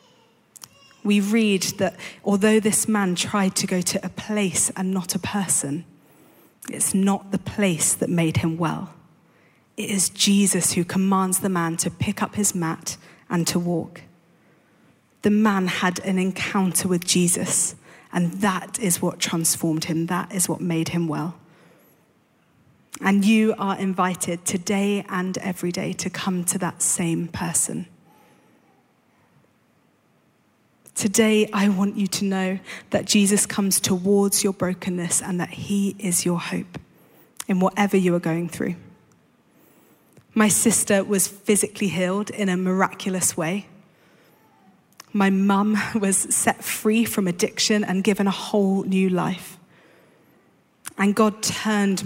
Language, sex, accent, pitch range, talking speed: English, female, British, 175-200 Hz, 140 wpm